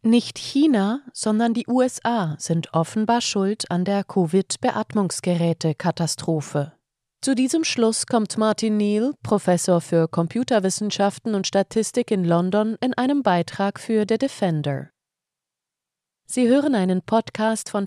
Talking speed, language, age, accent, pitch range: 120 wpm, German, 30-49, German, 170-225 Hz